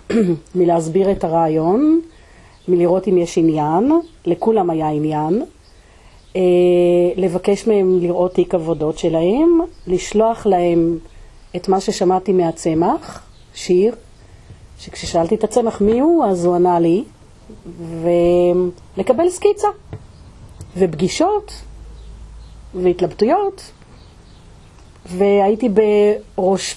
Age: 40-59